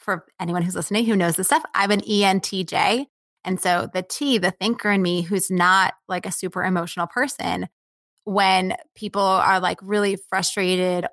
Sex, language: female, English